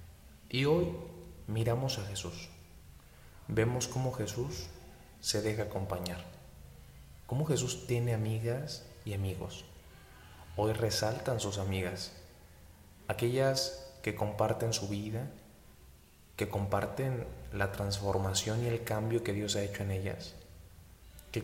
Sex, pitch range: male, 85-120 Hz